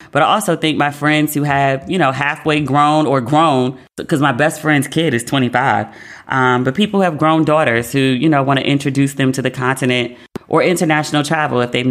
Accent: American